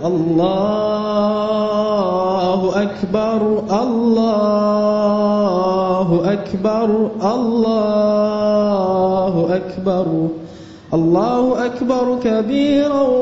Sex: male